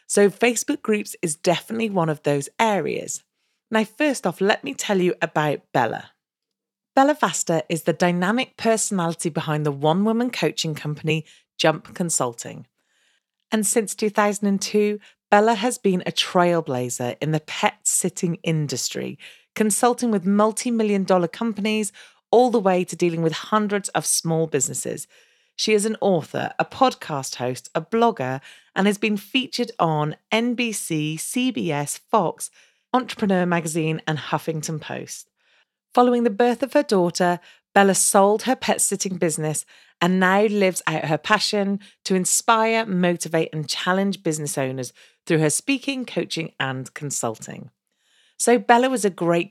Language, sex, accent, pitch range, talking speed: English, female, British, 160-220 Hz, 140 wpm